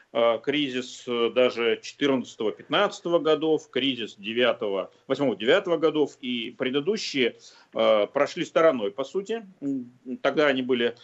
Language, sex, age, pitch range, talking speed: Russian, male, 40-59, 125-190 Hz, 85 wpm